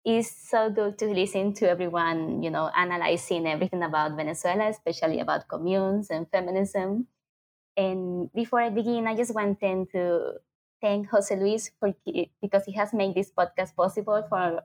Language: English